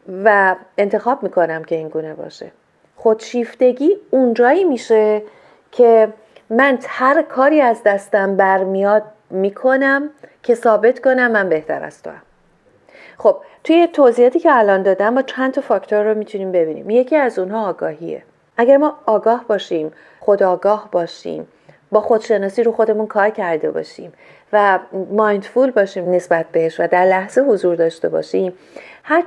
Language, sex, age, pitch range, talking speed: Persian, female, 40-59, 180-240 Hz, 135 wpm